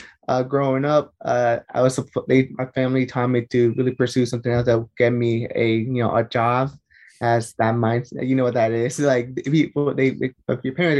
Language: English